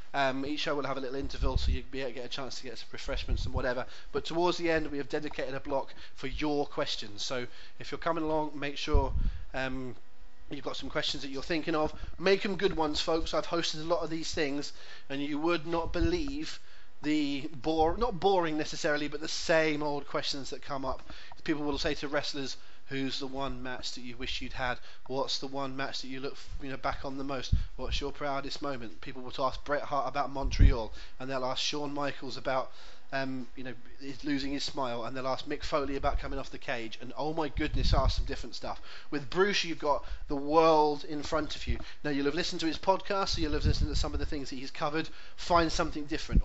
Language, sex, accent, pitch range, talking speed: English, male, British, 135-155 Hz, 230 wpm